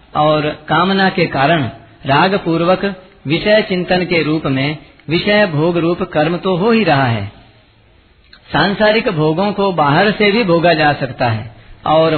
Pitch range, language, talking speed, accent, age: 140-190 Hz, Hindi, 155 wpm, native, 50-69